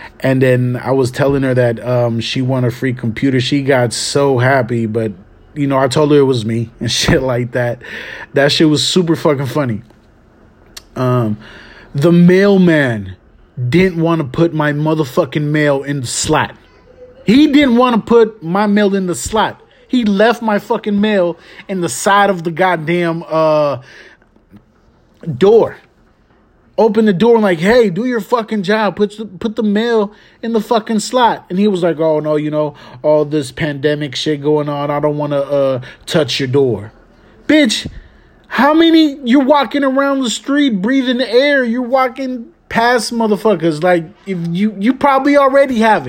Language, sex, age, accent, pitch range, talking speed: English, male, 30-49, American, 140-220 Hz, 175 wpm